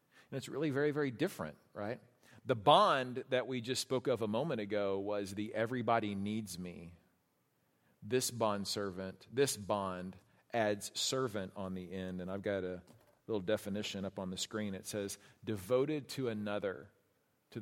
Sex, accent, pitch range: male, American, 110-170 Hz